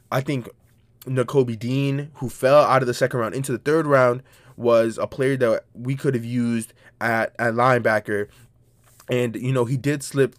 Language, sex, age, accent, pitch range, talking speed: English, male, 20-39, American, 115-135 Hz, 185 wpm